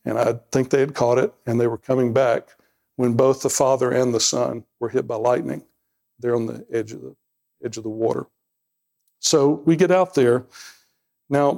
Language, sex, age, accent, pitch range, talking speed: English, male, 60-79, American, 115-135 Hz, 200 wpm